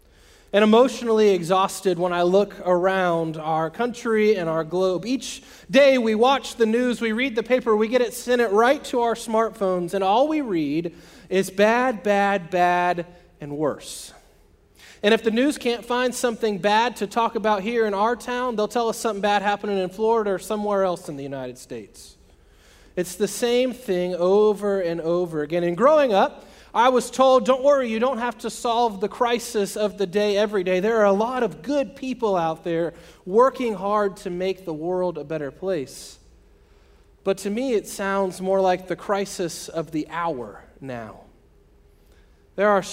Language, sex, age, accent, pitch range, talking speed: English, male, 30-49, American, 175-230 Hz, 185 wpm